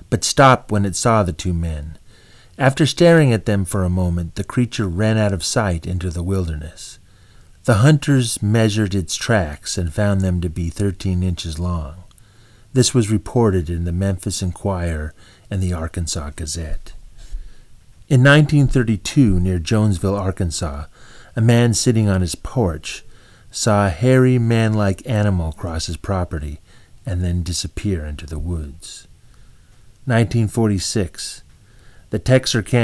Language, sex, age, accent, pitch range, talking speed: English, male, 30-49, American, 90-115 Hz, 135 wpm